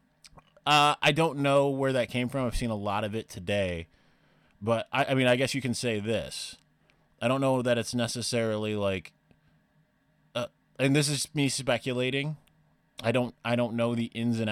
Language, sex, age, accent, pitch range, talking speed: English, male, 20-39, American, 100-125 Hz, 190 wpm